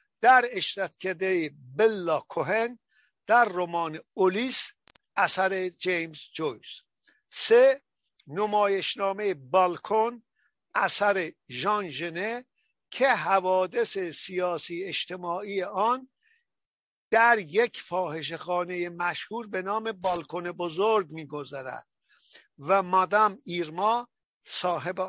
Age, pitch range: 60-79, 175-220 Hz